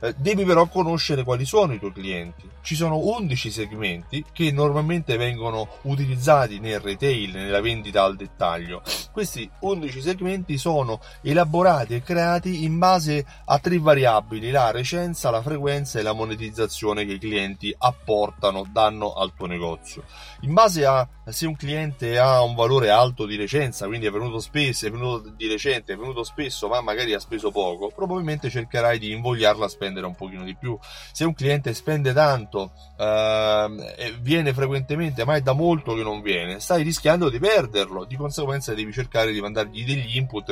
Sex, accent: male, native